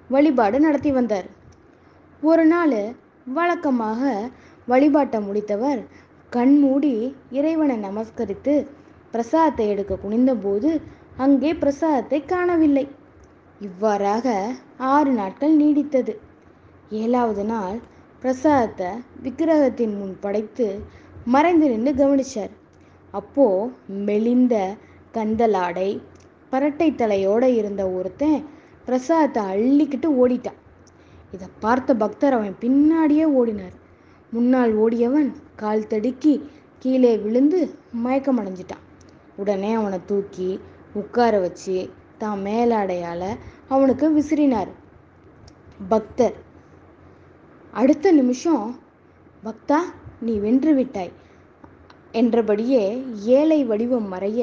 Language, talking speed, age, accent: Tamil, 80 wpm, 20-39, native